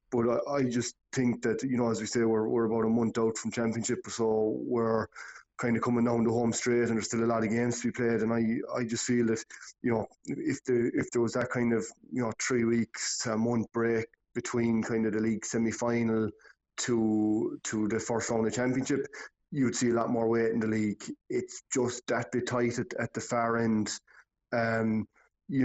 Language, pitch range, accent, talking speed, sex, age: English, 110-120 Hz, Irish, 225 wpm, male, 20-39